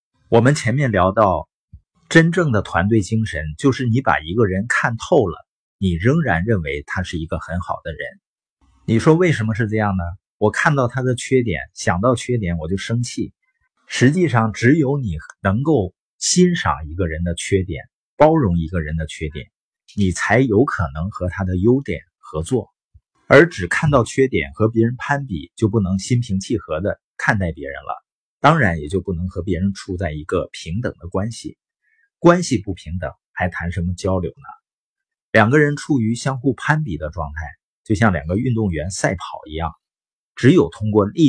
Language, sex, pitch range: Chinese, male, 90-125 Hz